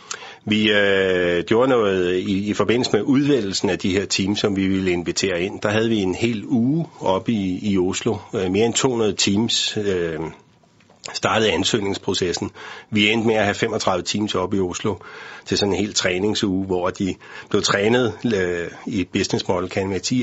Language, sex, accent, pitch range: Danish, male, native, 90-115 Hz